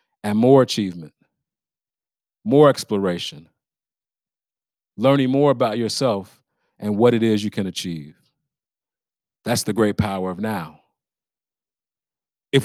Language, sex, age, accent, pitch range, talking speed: English, male, 40-59, American, 105-140 Hz, 110 wpm